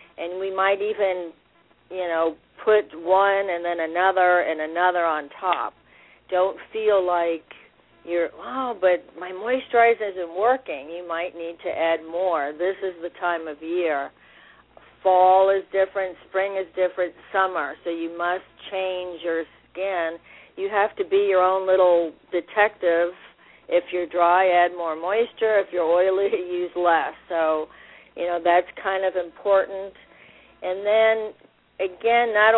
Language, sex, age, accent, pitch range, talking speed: English, female, 50-69, American, 170-195 Hz, 145 wpm